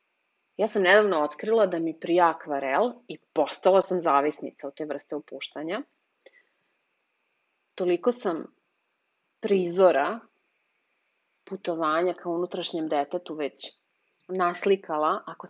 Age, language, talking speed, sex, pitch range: 30-49, English, 100 wpm, female, 160-195 Hz